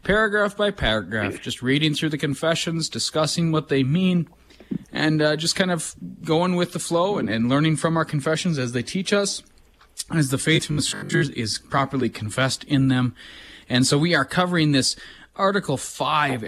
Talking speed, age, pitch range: 180 wpm, 30-49, 125-155 Hz